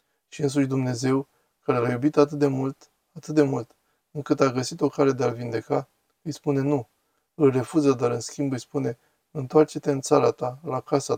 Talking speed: 195 wpm